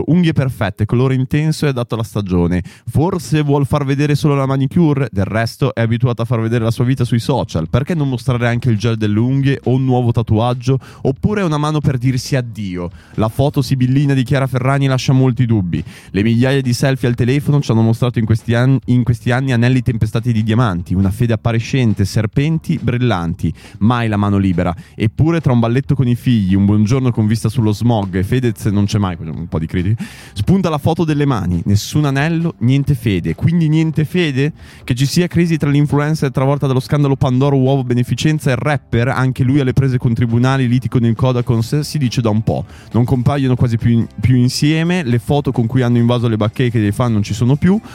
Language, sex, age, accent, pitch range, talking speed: Italian, male, 20-39, native, 110-140 Hz, 205 wpm